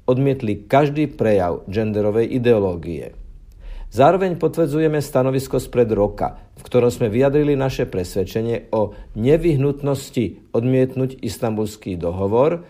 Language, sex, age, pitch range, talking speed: Slovak, male, 50-69, 105-135 Hz, 100 wpm